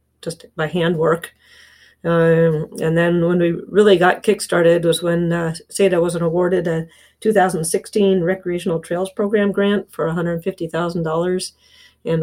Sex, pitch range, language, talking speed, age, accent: female, 165-190 Hz, English, 135 wpm, 50-69, American